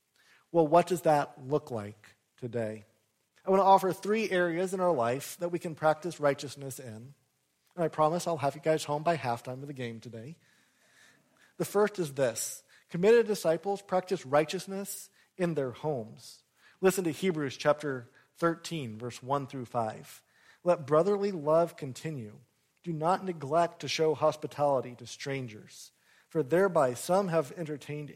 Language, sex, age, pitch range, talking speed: English, male, 40-59, 130-175 Hz, 155 wpm